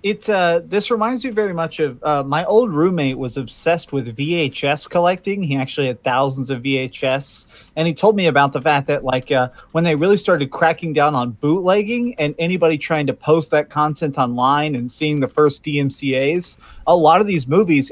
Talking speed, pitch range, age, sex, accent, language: 200 wpm, 140-175 Hz, 30-49, male, American, English